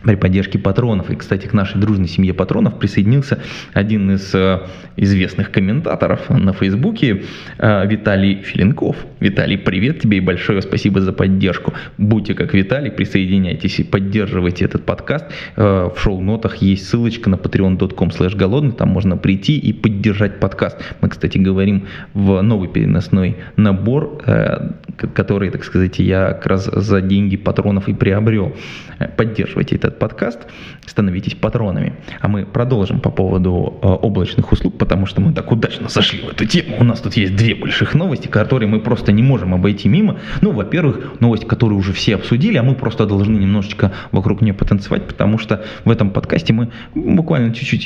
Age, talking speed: 20-39, 160 wpm